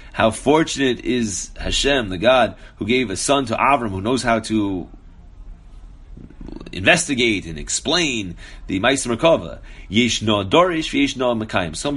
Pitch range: 95-130 Hz